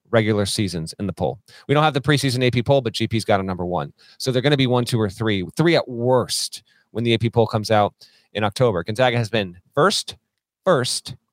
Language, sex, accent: English, male, American